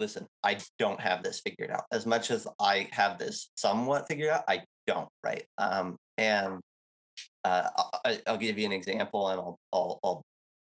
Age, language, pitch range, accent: 30-49, English, 90-110 Hz, American